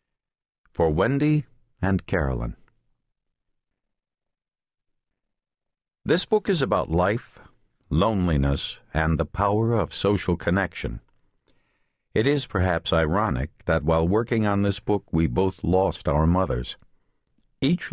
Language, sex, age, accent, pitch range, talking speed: English, male, 60-79, American, 80-110 Hz, 105 wpm